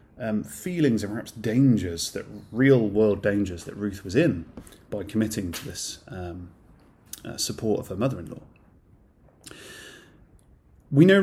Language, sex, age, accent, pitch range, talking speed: English, male, 30-49, British, 100-130 Hz, 130 wpm